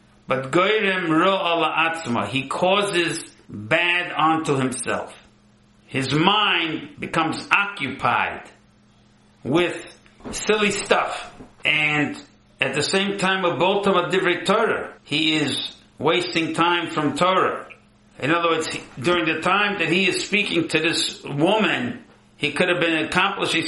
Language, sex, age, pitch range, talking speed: English, male, 60-79, 140-180 Hz, 125 wpm